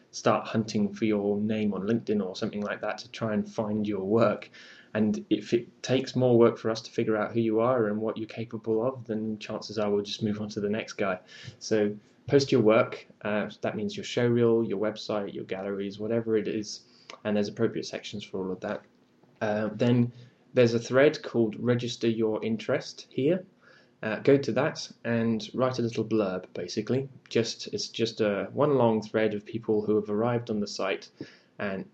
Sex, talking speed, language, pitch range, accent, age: male, 200 wpm, English, 105-120 Hz, British, 10-29